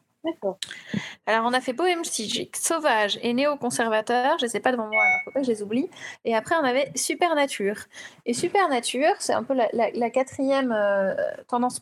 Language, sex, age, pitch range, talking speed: French, female, 30-49, 215-275 Hz, 195 wpm